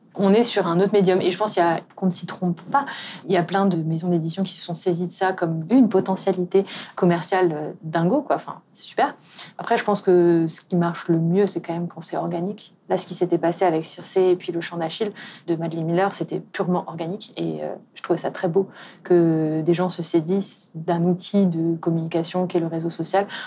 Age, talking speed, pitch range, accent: 30-49, 235 wpm, 170-195 Hz, French